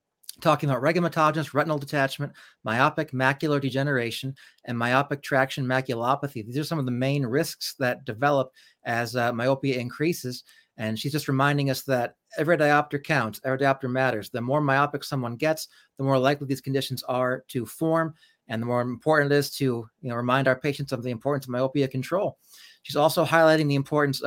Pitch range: 130-150 Hz